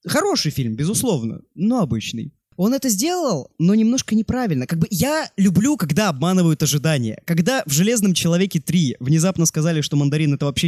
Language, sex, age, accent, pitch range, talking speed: Russian, male, 20-39, native, 135-185 Hz, 170 wpm